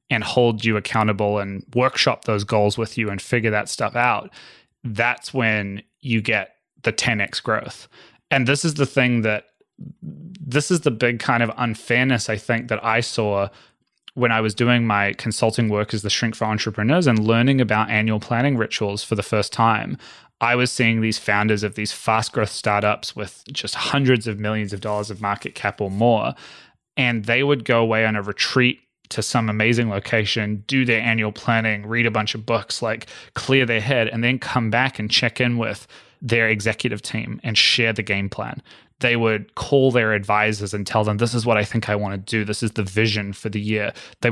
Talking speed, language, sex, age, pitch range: 200 wpm, English, male, 20-39, 105-120 Hz